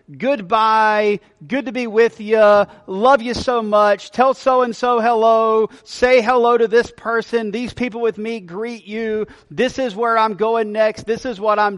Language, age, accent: English, 40-59, American